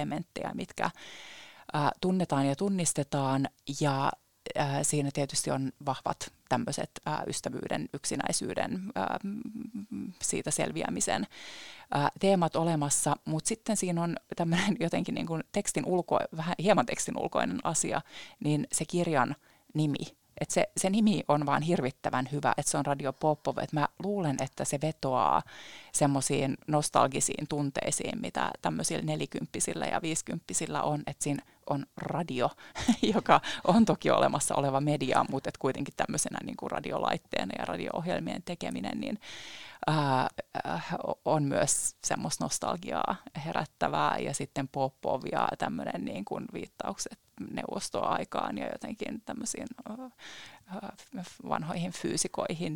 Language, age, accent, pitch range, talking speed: Finnish, 30-49, native, 145-200 Hz, 115 wpm